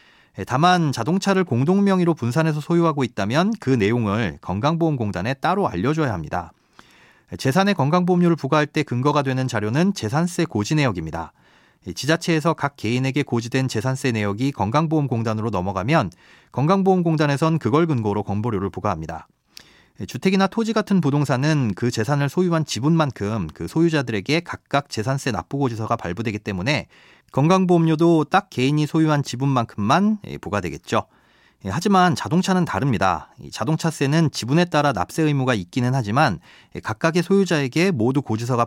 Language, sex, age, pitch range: Korean, male, 30-49, 110-165 Hz